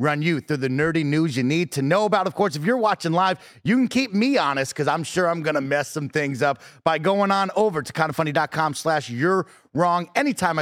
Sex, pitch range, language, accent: male, 145-195 Hz, English, American